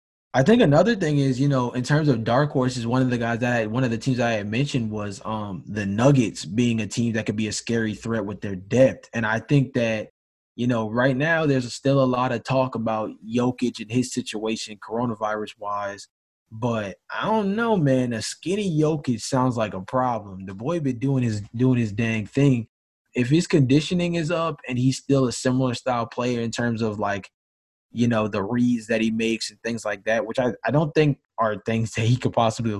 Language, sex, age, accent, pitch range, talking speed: English, male, 20-39, American, 110-130 Hz, 215 wpm